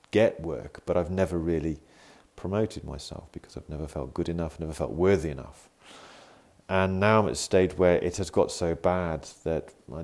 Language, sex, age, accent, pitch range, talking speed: English, male, 40-59, British, 80-95 Hz, 190 wpm